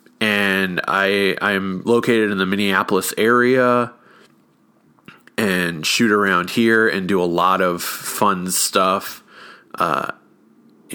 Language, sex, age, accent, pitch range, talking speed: English, male, 30-49, American, 90-110 Hz, 110 wpm